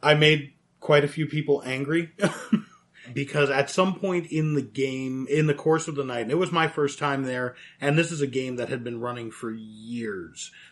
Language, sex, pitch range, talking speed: English, male, 125-155 Hz, 215 wpm